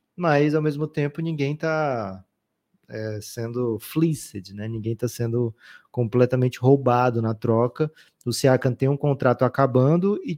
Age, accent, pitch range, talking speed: 20-39, Brazilian, 120-150 Hz, 140 wpm